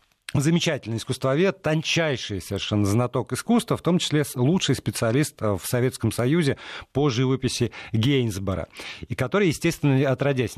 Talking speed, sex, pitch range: 120 wpm, male, 100-130 Hz